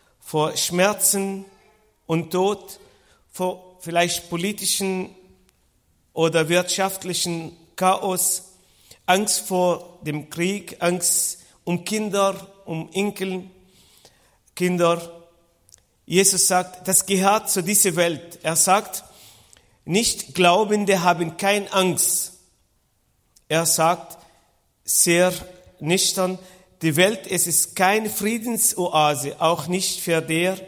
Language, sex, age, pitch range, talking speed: German, male, 50-69, 165-195 Hz, 95 wpm